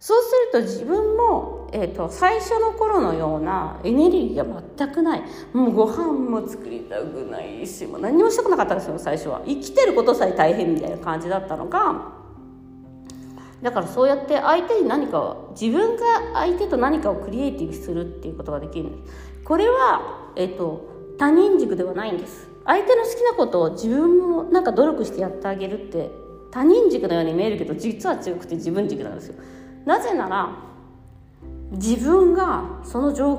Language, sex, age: Japanese, female, 40-59